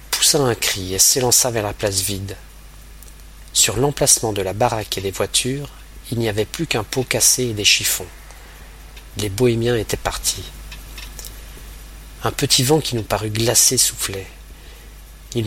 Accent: French